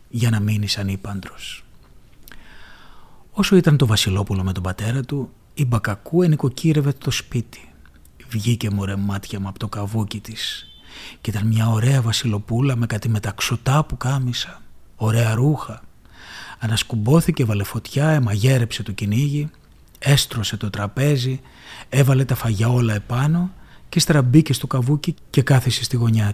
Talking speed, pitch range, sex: 135 wpm, 105-135 Hz, male